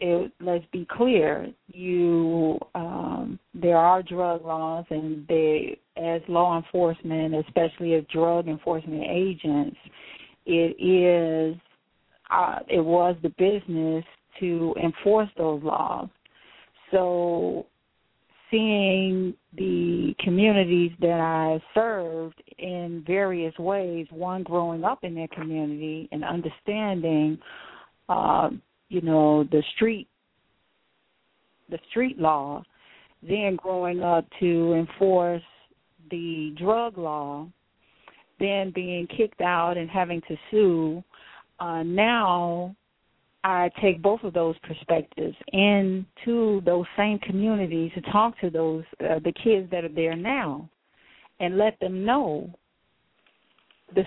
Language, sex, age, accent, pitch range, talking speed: English, female, 40-59, American, 165-195 Hz, 110 wpm